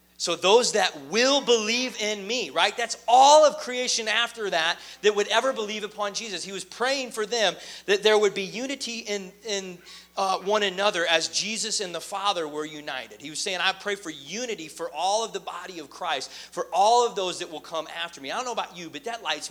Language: English